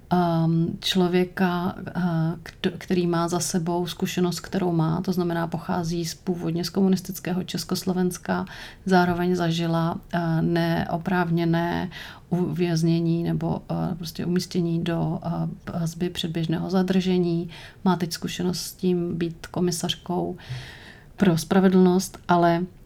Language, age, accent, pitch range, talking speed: English, 30-49, Czech, 170-185 Hz, 95 wpm